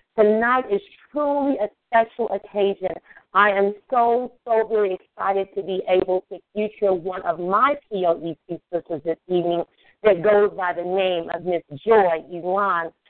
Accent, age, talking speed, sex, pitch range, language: American, 40-59, 150 wpm, female, 180-225 Hz, English